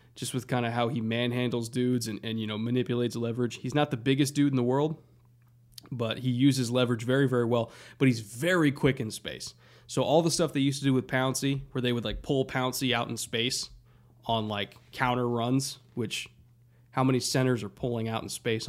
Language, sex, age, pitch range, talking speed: English, male, 20-39, 120-135 Hz, 215 wpm